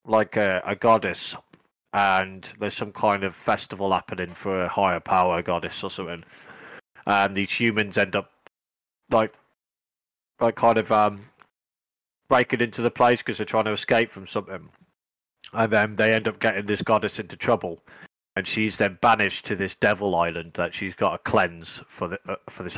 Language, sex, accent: English, male, British